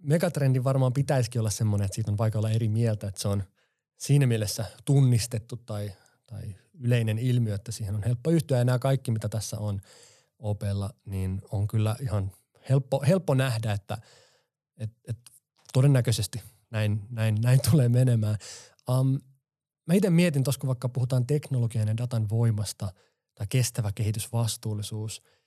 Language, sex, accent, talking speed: Finnish, male, native, 150 wpm